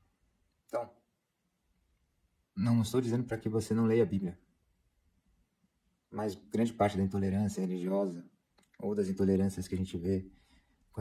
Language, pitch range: Portuguese, 85-105 Hz